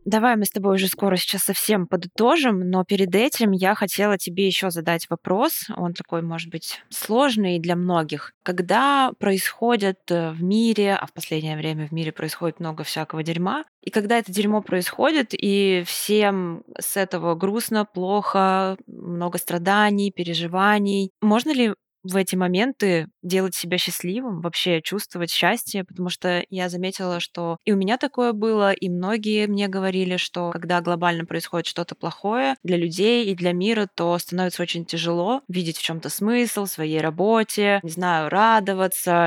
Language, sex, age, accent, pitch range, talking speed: Russian, female, 20-39, native, 170-205 Hz, 155 wpm